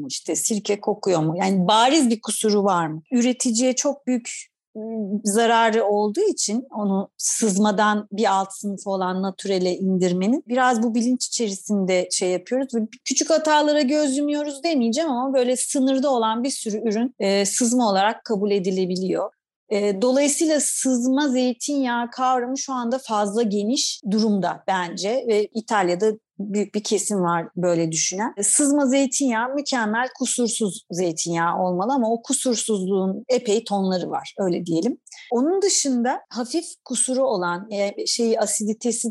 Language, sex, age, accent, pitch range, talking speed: Turkish, female, 40-59, native, 195-250 Hz, 135 wpm